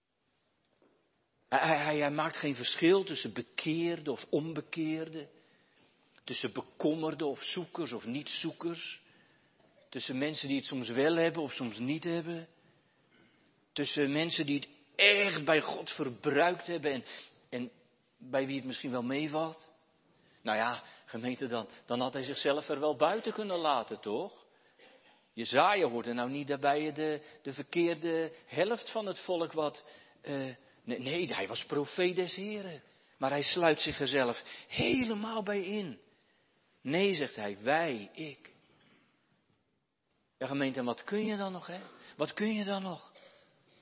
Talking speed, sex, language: 150 wpm, male, Dutch